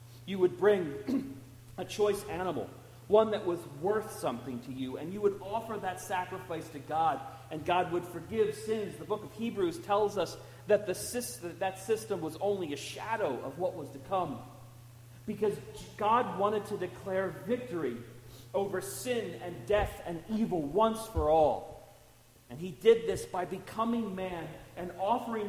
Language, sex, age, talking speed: English, male, 40-59, 165 wpm